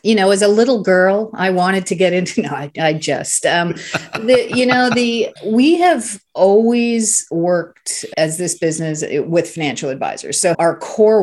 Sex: female